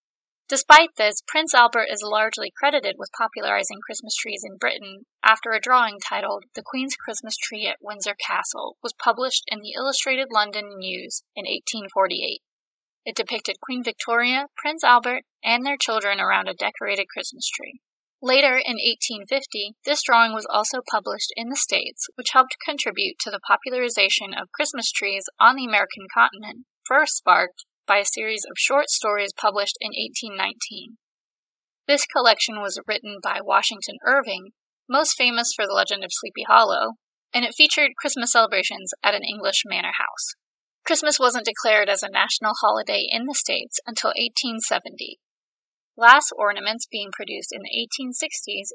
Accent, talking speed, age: American, 155 wpm, 20-39